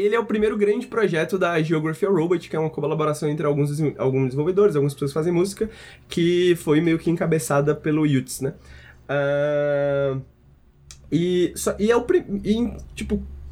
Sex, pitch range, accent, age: male, 140-195 Hz, Brazilian, 20-39